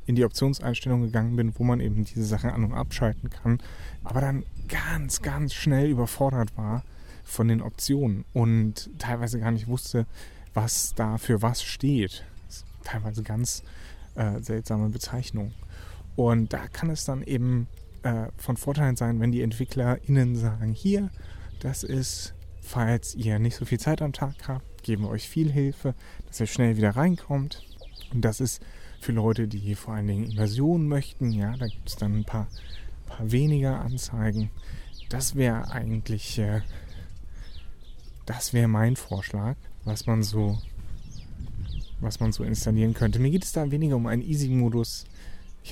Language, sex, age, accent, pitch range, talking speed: German, male, 30-49, German, 105-125 Hz, 165 wpm